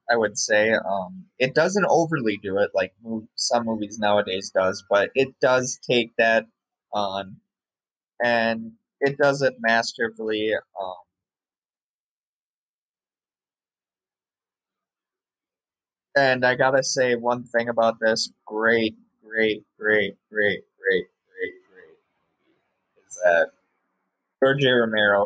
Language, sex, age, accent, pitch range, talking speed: English, male, 20-39, American, 110-145 Hz, 115 wpm